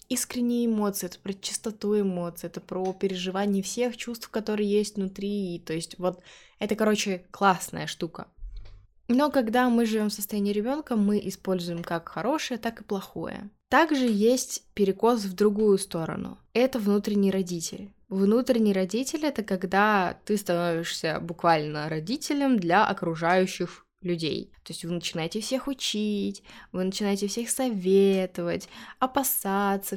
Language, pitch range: Russian, 190-240 Hz